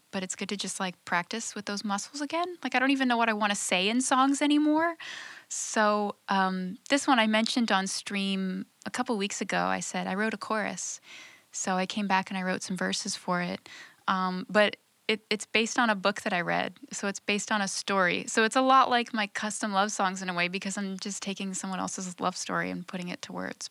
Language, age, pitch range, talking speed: English, 10-29, 180-220 Hz, 240 wpm